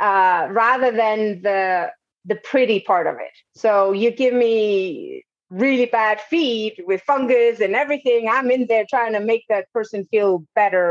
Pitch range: 190-235 Hz